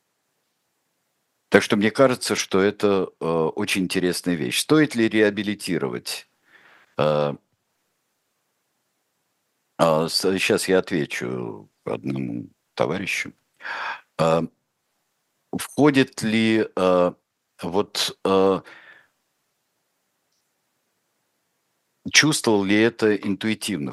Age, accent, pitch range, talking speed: 60-79, native, 85-115 Hz, 75 wpm